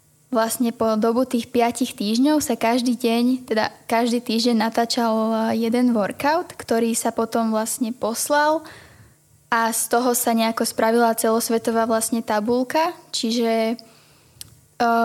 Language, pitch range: Slovak, 225-245 Hz